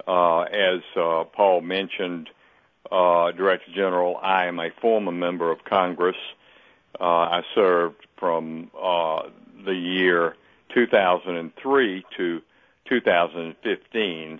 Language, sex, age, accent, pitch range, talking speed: English, male, 60-79, American, 85-95 Hz, 95 wpm